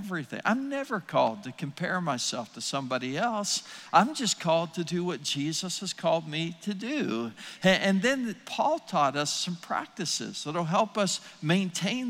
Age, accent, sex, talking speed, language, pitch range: 60-79, American, male, 170 wpm, English, 140-195 Hz